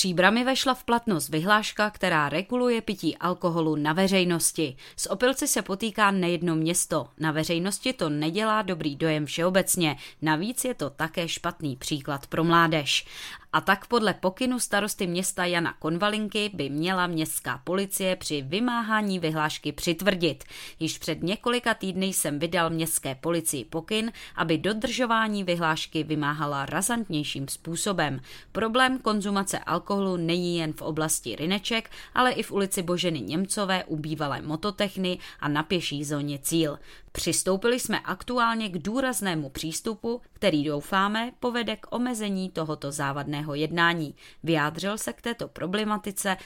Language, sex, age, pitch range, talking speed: Czech, female, 20-39, 155-210 Hz, 135 wpm